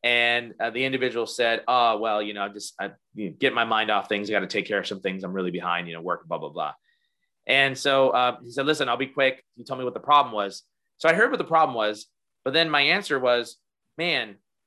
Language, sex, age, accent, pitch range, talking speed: English, male, 30-49, American, 105-155 Hz, 250 wpm